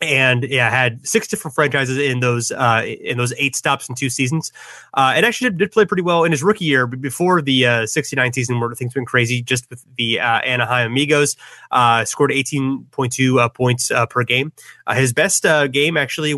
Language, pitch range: English, 120-145 Hz